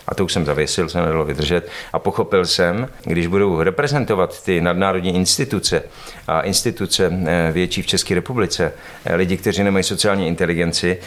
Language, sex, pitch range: Czech, male, 90-100 Hz